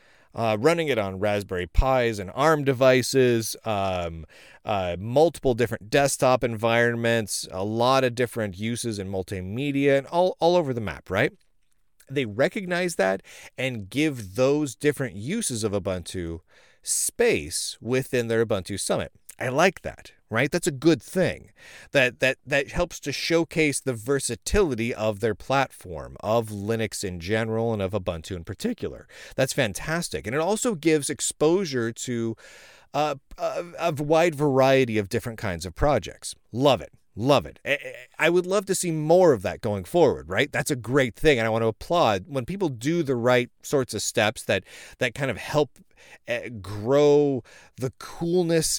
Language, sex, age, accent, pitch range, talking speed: English, male, 30-49, American, 110-150 Hz, 160 wpm